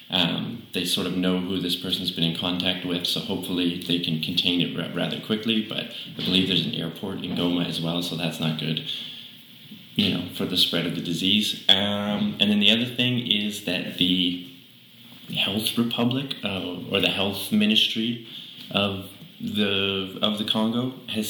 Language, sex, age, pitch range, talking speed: English, male, 20-39, 85-105 Hz, 190 wpm